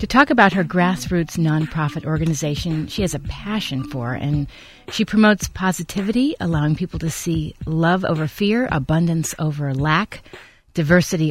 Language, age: English, 30-49